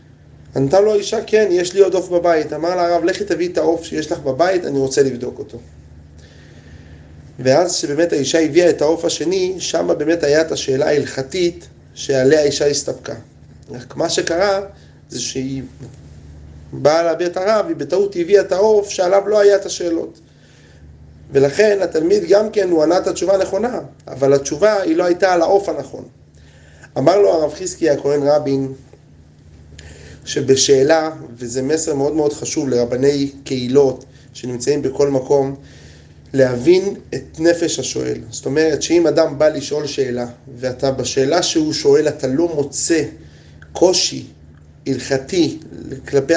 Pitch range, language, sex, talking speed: 135-180 Hz, Hebrew, male, 145 wpm